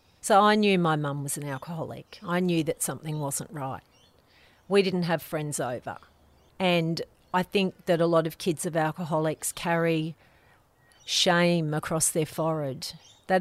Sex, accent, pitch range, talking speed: female, Australian, 165-195 Hz, 155 wpm